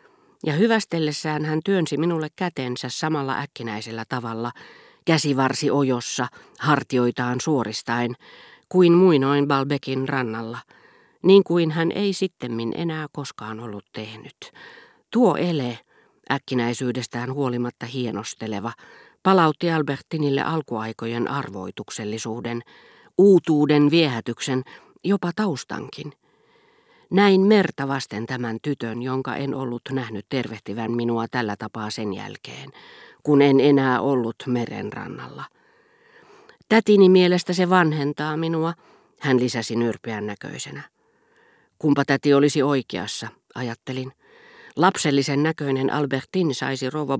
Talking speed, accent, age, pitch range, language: 100 wpm, native, 40-59, 120-160 Hz, Finnish